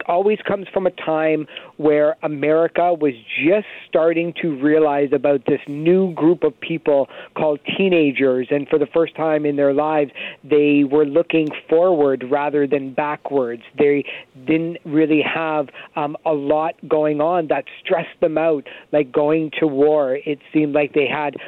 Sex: male